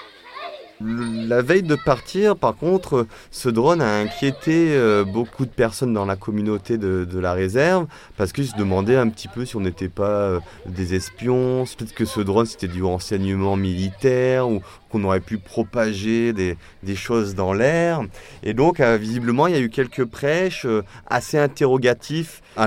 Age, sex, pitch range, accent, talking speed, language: 30-49, male, 95-125 Hz, French, 165 wpm, French